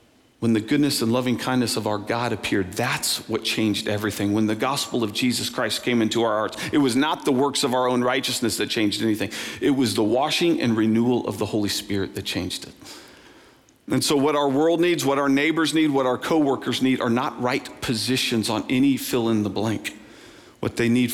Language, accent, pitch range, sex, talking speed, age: English, American, 115-140 Hz, male, 215 wpm, 40-59